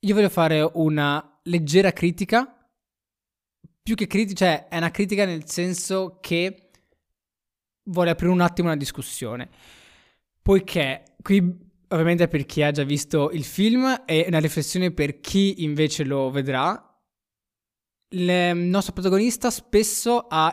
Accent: native